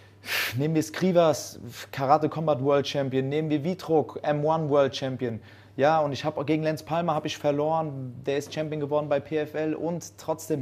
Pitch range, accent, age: 115-140 Hz, German, 30-49